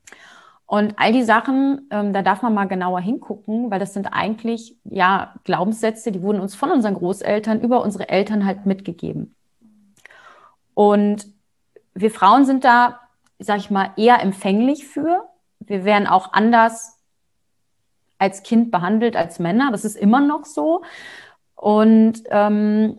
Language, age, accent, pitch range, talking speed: German, 30-49, German, 195-235 Hz, 145 wpm